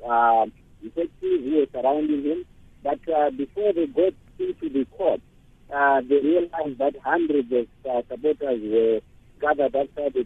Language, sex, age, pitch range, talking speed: English, male, 50-69, 125-160 Hz, 160 wpm